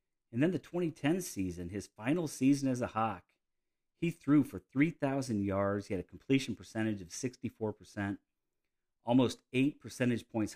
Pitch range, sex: 95-115 Hz, male